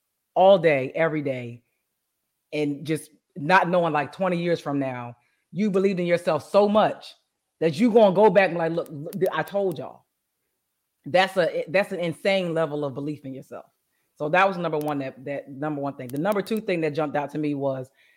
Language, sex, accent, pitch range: English, female, American, 150-195 Hz